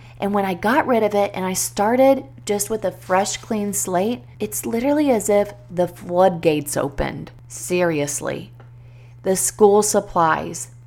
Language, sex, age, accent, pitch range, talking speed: English, female, 30-49, American, 155-225 Hz, 150 wpm